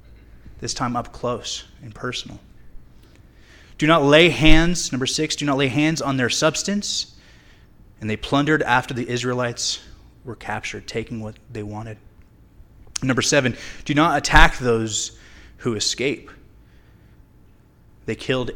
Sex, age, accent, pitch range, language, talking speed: male, 20-39, American, 100-130 Hz, English, 135 wpm